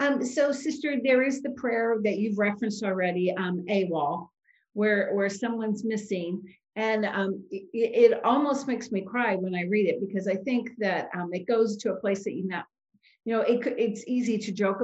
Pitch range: 190-240 Hz